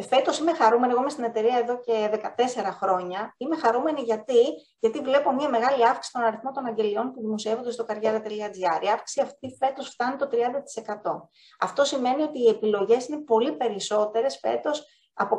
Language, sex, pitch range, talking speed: Greek, female, 220-270 Hz, 170 wpm